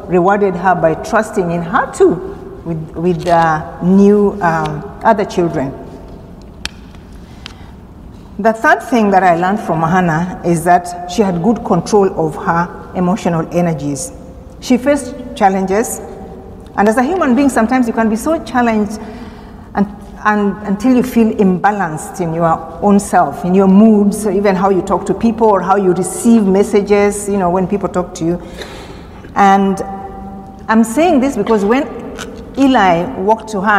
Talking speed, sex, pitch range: 155 wpm, female, 180-225 Hz